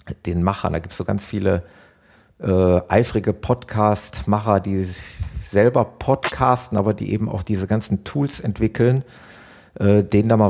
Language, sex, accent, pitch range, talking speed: German, male, German, 95-115 Hz, 155 wpm